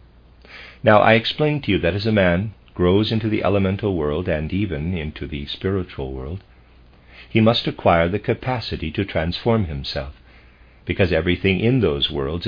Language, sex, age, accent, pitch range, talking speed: English, male, 50-69, American, 65-100 Hz, 160 wpm